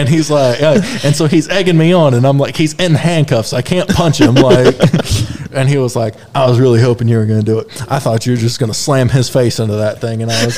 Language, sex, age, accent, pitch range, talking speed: English, male, 20-39, American, 115-160 Hz, 270 wpm